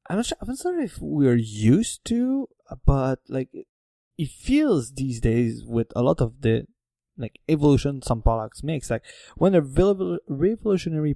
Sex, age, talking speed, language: male, 20-39, 160 wpm, English